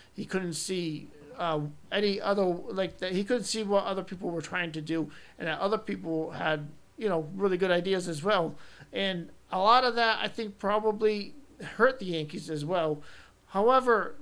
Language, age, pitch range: English, 40-59, 165-215 Hz